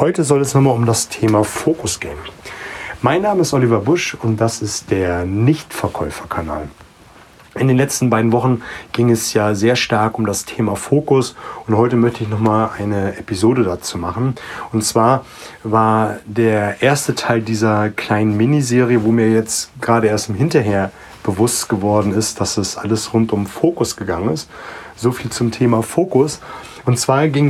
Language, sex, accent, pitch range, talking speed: German, male, German, 105-125 Hz, 170 wpm